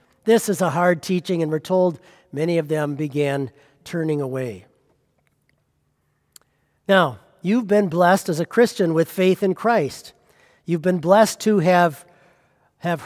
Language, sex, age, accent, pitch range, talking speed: English, male, 50-69, American, 170-230 Hz, 145 wpm